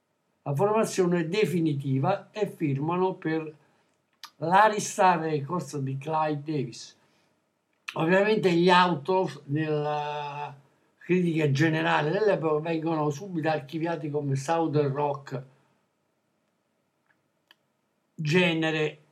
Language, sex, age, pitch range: Italian, male, 60-79, 145-175 Hz